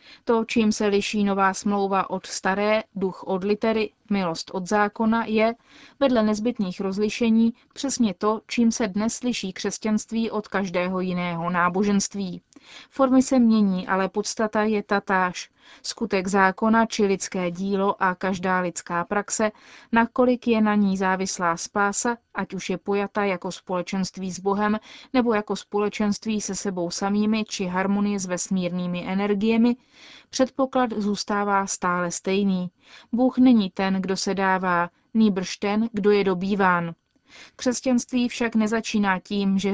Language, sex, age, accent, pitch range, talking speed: Czech, female, 30-49, native, 185-220 Hz, 135 wpm